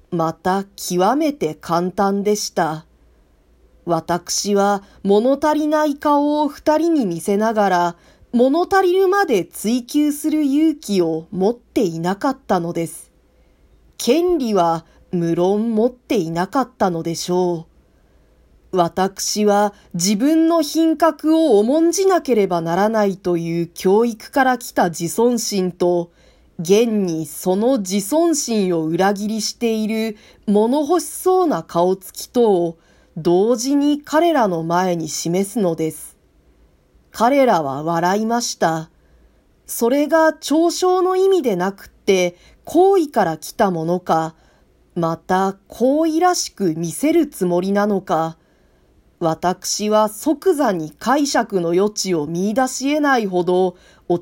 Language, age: Japanese, 40-59